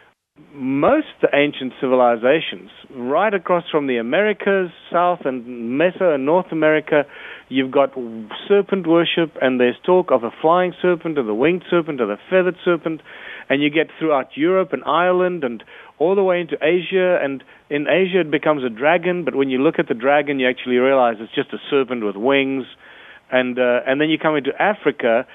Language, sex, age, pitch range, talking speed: English, male, 40-59, 130-175 Hz, 180 wpm